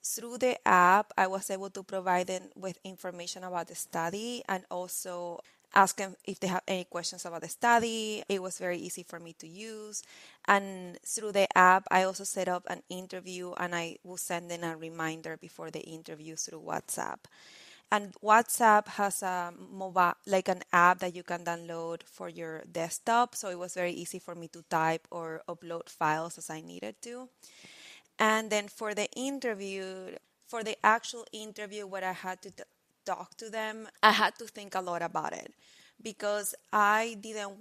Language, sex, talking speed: English, female, 185 wpm